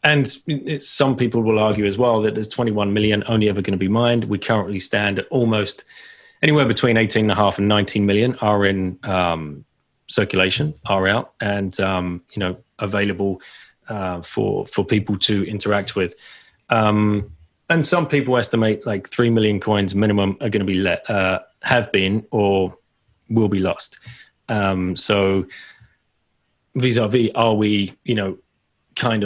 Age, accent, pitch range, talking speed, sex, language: 30-49, British, 100-120 Hz, 160 wpm, male, English